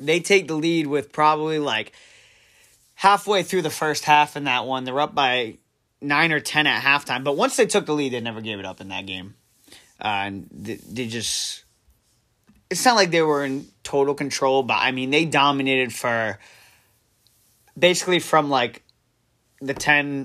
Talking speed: 180 wpm